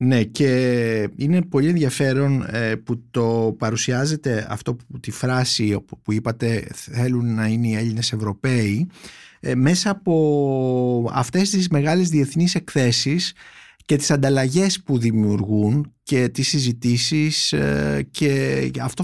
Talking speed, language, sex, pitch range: 130 wpm, Greek, male, 120-155 Hz